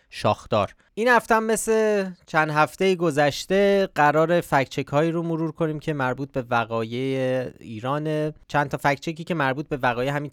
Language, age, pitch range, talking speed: Persian, 20-39, 110-145 Hz, 150 wpm